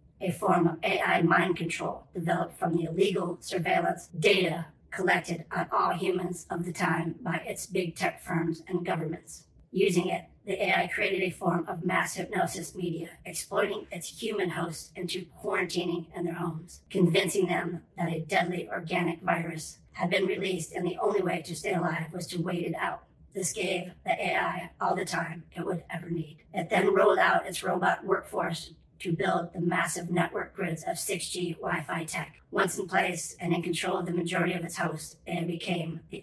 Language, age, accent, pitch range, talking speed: English, 50-69, American, 170-180 Hz, 185 wpm